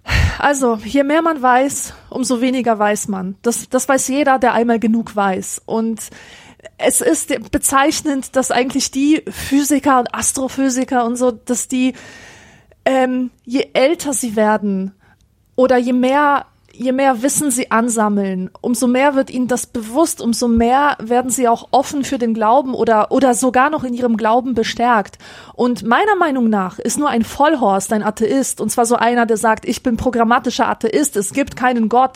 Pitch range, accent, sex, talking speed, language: 230-270 Hz, German, female, 170 wpm, German